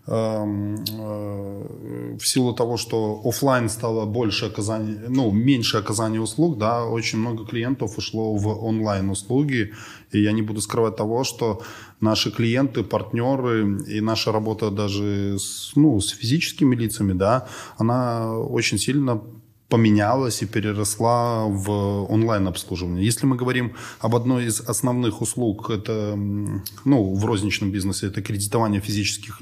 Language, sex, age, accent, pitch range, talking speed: Russian, male, 20-39, native, 100-115 Hz, 130 wpm